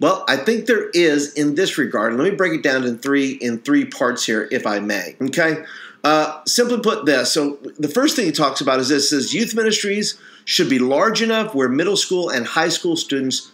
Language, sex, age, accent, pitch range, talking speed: English, male, 50-69, American, 130-185 Hz, 220 wpm